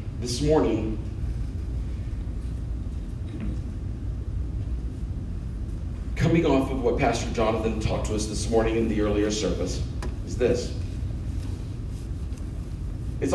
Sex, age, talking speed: male, 40-59, 90 wpm